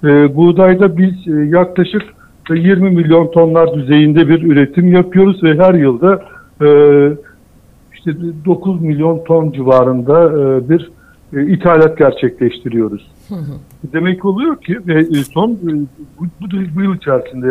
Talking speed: 95 wpm